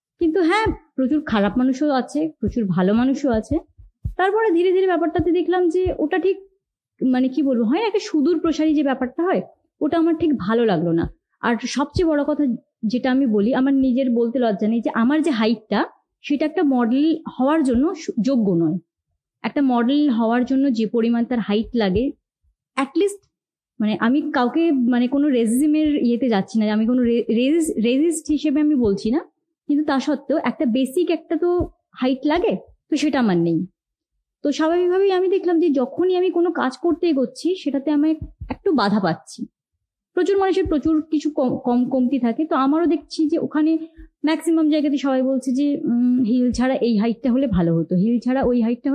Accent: Indian